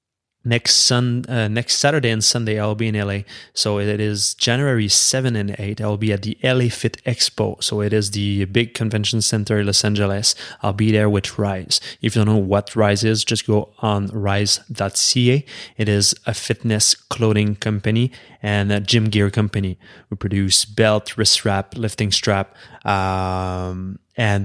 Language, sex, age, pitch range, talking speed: English, male, 20-39, 100-115 Hz, 175 wpm